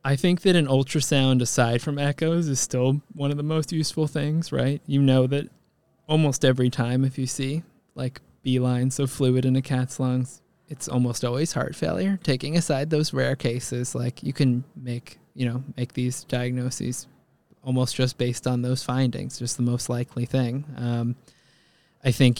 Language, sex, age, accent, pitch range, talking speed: English, male, 20-39, American, 120-145 Hz, 180 wpm